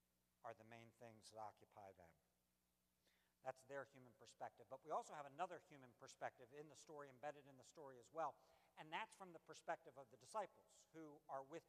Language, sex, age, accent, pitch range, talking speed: English, male, 60-79, American, 145-215 Hz, 195 wpm